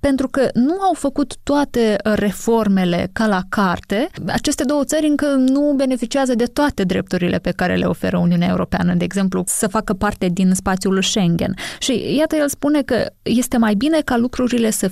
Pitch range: 185-245 Hz